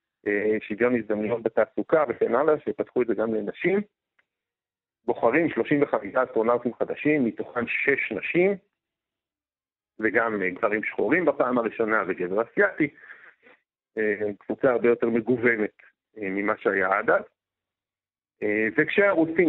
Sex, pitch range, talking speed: male, 110-155 Hz, 105 wpm